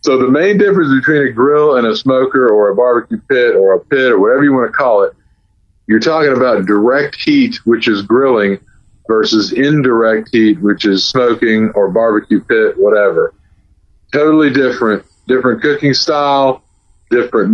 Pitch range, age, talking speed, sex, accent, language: 110-150 Hz, 40-59, 165 wpm, male, American, English